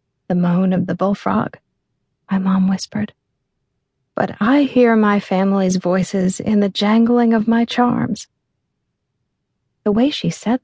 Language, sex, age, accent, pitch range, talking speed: English, female, 40-59, American, 185-220 Hz, 135 wpm